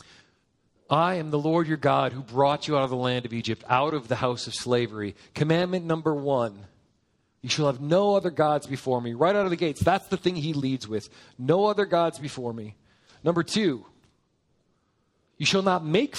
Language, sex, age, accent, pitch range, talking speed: English, male, 40-59, American, 120-160 Hz, 200 wpm